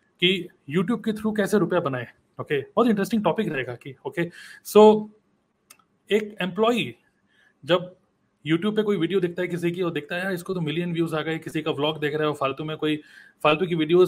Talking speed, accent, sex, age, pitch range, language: 170 wpm, native, male, 30-49, 160-200 Hz, Hindi